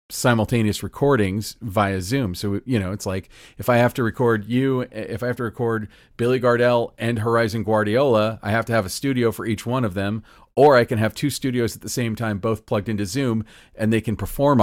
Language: English